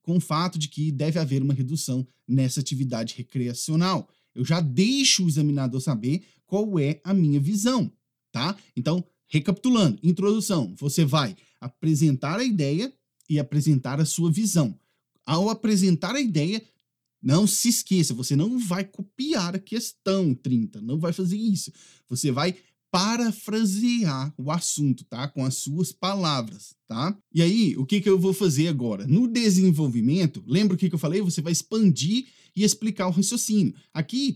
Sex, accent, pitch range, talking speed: male, Brazilian, 150-205 Hz, 160 wpm